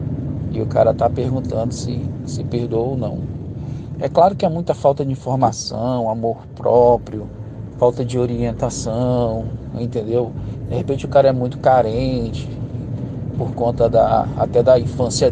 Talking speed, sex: 145 wpm, male